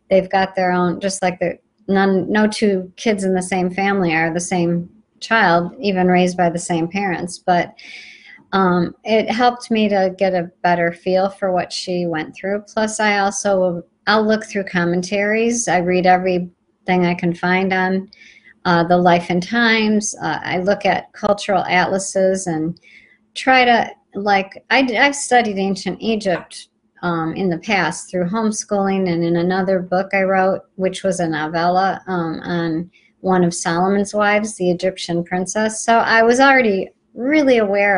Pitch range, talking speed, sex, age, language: 180-215 Hz, 165 wpm, male, 50-69, English